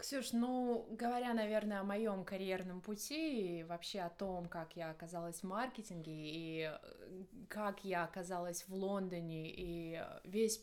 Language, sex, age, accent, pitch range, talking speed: Russian, female, 20-39, native, 175-210 Hz, 140 wpm